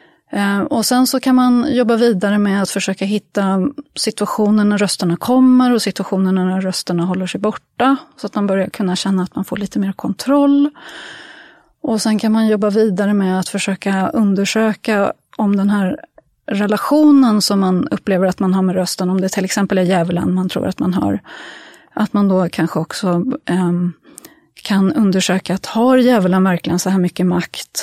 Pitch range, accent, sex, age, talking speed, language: 190-240 Hz, Swedish, female, 30-49, 175 wpm, English